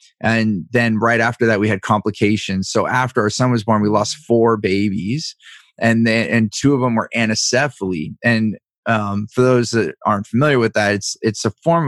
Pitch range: 105-120 Hz